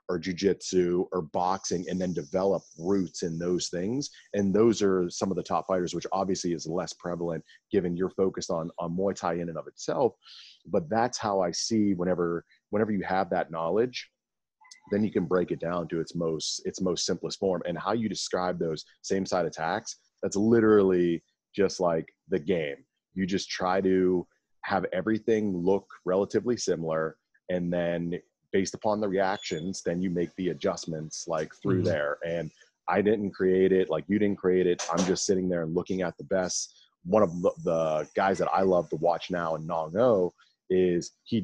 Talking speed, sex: 190 wpm, male